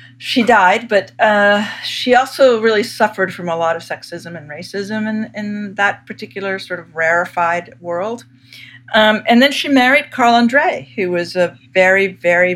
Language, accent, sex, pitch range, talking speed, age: English, American, female, 150-195 Hz, 165 wpm, 50-69